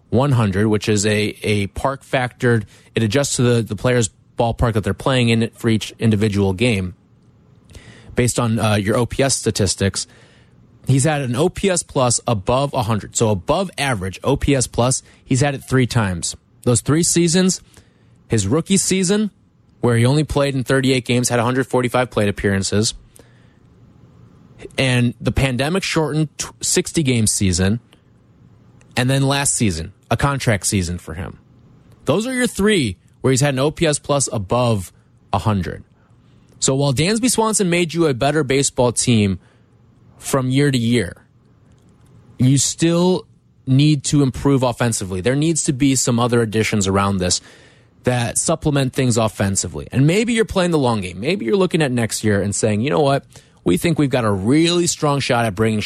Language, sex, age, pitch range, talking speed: English, male, 30-49, 110-140 Hz, 160 wpm